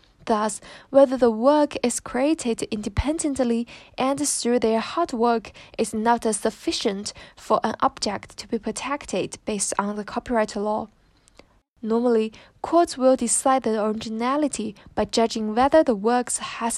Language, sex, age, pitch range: Chinese, female, 10-29, 215-265 Hz